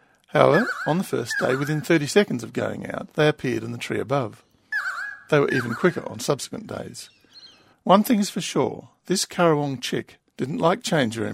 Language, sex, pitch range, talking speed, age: English, male, 125-180 Hz, 190 wpm, 50-69